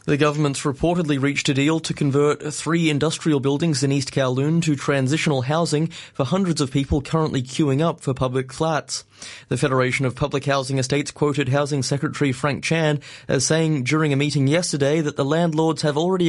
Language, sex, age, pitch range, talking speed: English, male, 20-39, 135-155 Hz, 180 wpm